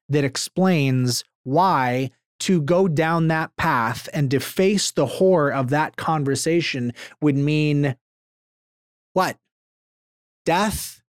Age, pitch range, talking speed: 30-49, 115-160 Hz, 105 wpm